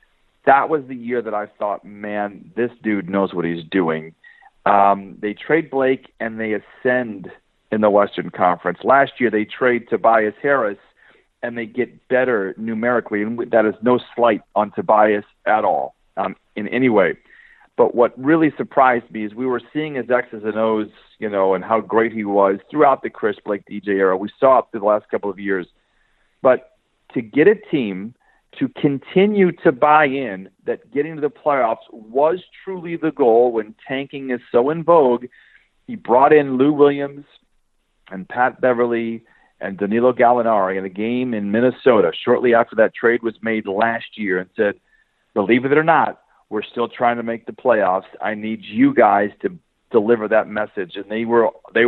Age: 40-59